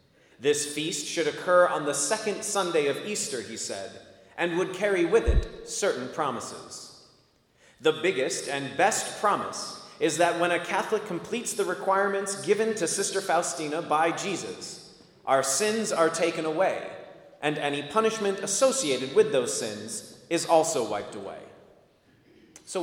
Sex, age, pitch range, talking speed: male, 30-49, 160-220 Hz, 145 wpm